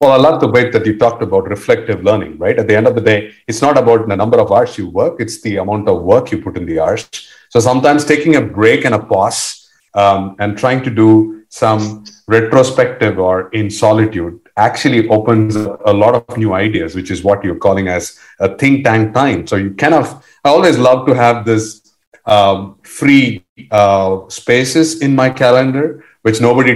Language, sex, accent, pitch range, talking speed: English, male, Indian, 110-135 Hz, 205 wpm